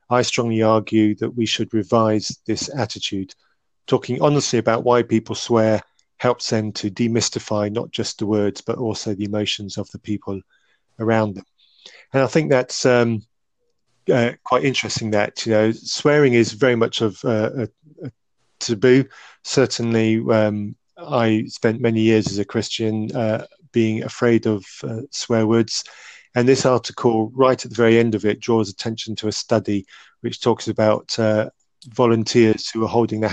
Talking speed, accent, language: 165 wpm, British, English